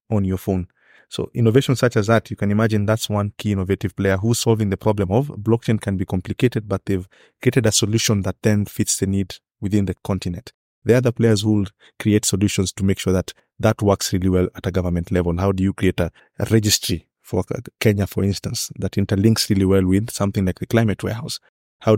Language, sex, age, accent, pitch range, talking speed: English, male, 20-39, South African, 95-110 Hz, 215 wpm